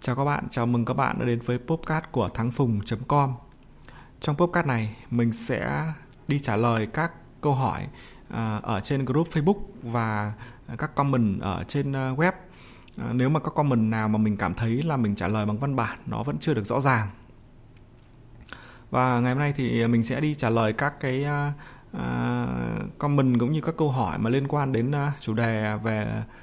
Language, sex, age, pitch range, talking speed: Vietnamese, male, 20-39, 115-145 Hz, 185 wpm